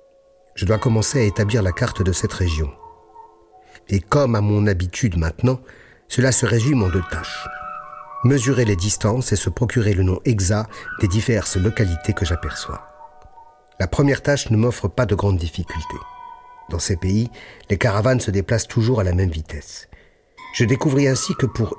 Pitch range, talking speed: 100-140 Hz, 170 wpm